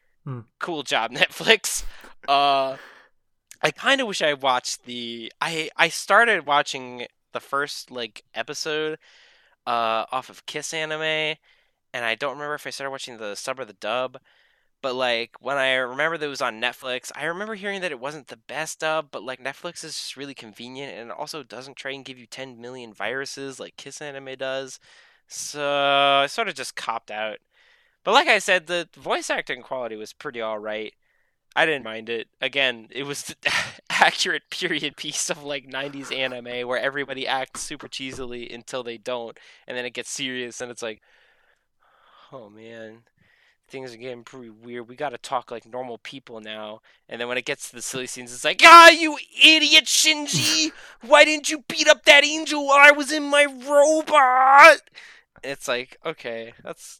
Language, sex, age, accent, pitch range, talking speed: English, male, 10-29, American, 125-160 Hz, 180 wpm